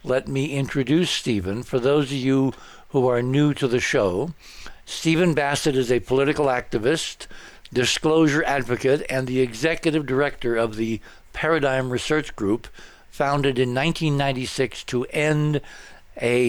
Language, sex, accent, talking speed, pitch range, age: English, male, American, 125 wpm, 115-145 Hz, 60-79